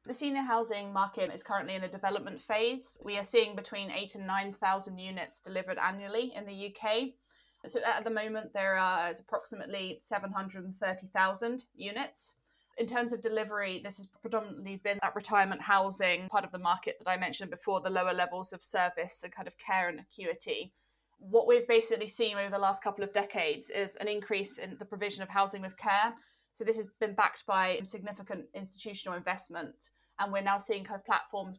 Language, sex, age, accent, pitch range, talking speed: English, female, 20-39, British, 190-220 Hz, 185 wpm